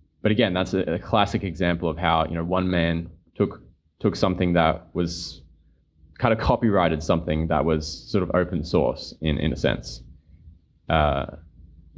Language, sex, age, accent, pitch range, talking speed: English, male, 20-39, Australian, 80-95 Hz, 165 wpm